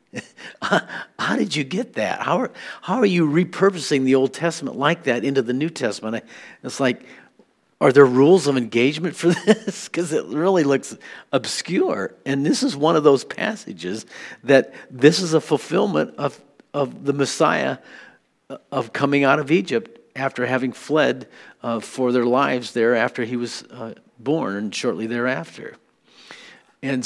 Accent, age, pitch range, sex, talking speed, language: American, 50-69, 120-150 Hz, male, 155 wpm, English